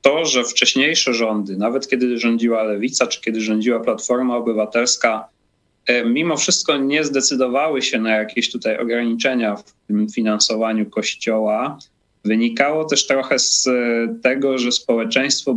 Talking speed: 125 wpm